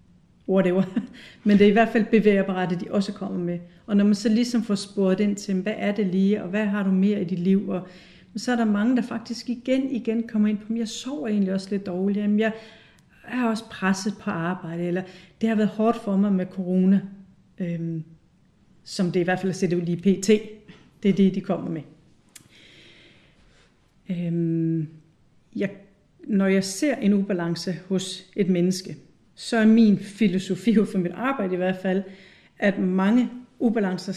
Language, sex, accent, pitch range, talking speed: Danish, female, native, 180-210 Hz, 195 wpm